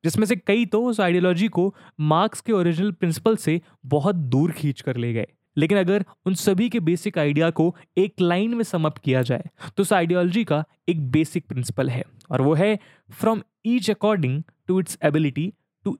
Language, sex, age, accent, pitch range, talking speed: English, male, 20-39, Indian, 150-205 Hz, 190 wpm